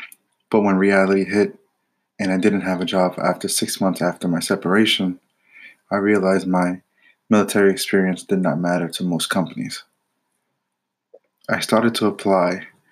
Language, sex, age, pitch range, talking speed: English, male, 20-39, 95-105 Hz, 145 wpm